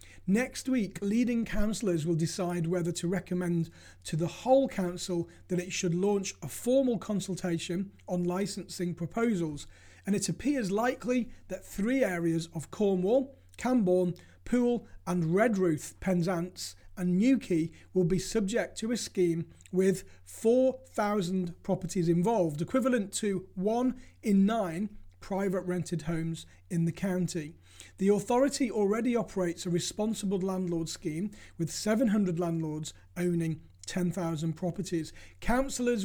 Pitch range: 165-215 Hz